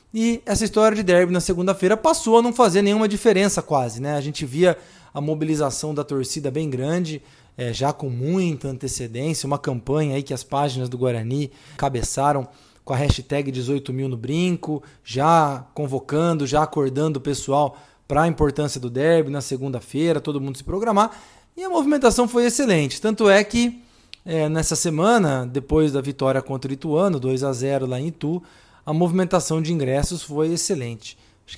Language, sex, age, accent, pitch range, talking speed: Portuguese, male, 20-39, Brazilian, 135-180 Hz, 165 wpm